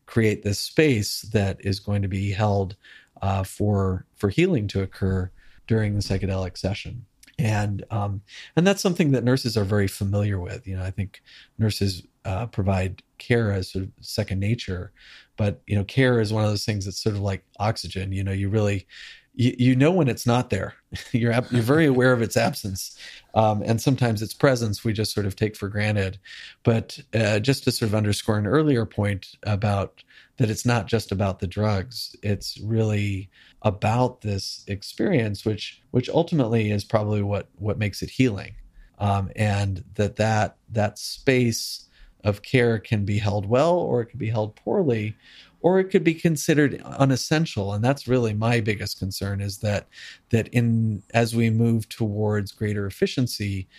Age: 40-59